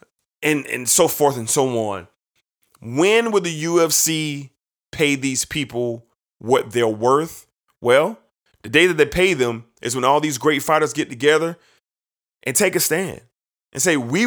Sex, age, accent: male, 30-49, American